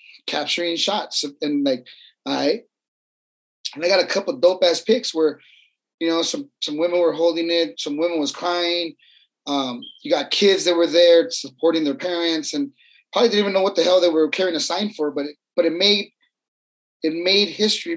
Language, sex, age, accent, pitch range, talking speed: English, male, 30-49, American, 155-200 Hz, 200 wpm